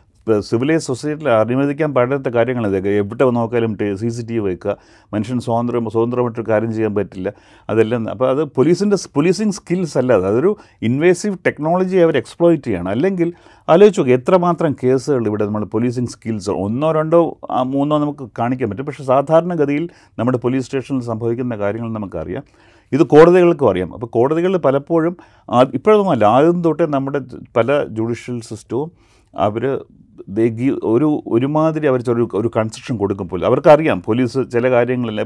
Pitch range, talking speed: 110-145 Hz, 140 wpm